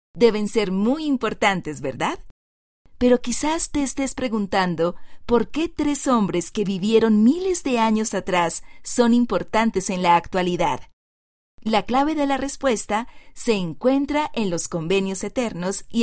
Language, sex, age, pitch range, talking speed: Spanish, female, 30-49, 185-245 Hz, 140 wpm